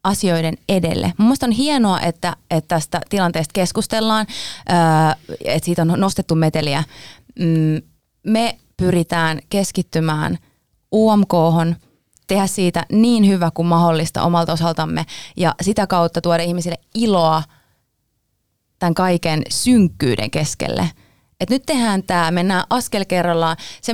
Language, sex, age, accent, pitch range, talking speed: Finnish, female, 30-49, native, 160-220 Hz, 115 wpm